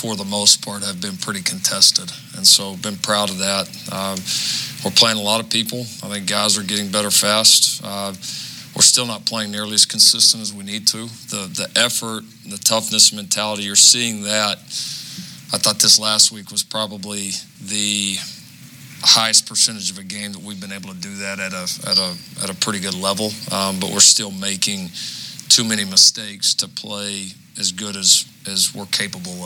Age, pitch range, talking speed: 40-59, 100-120 Hz, 190 wpm